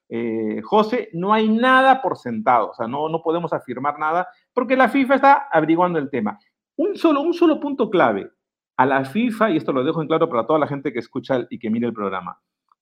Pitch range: 150-235 Hz